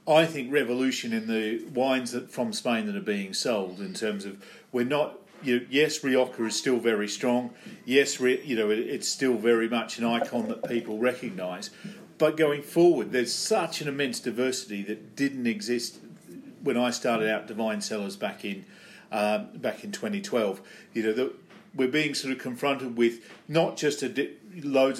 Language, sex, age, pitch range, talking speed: English, male, 50-69, 115-145 Hz, 180 wpm